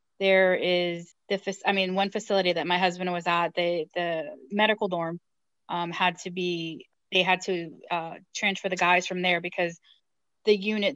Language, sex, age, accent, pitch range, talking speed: English, female, 20-39, American, 175-195 Hz, 175 wpm